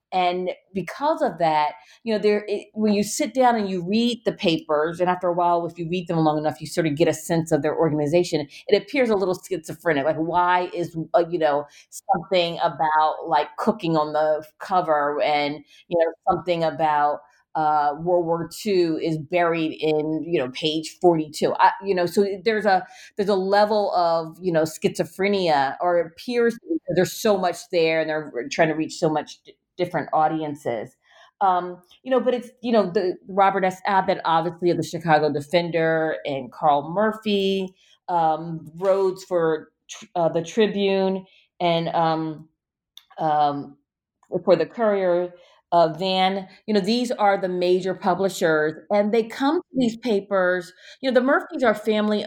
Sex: female